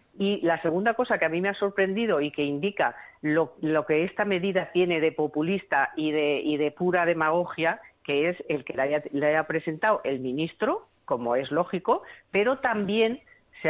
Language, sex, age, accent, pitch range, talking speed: Spanish, female, 40-59, Spanish, 155-200 Hz, 190 wpm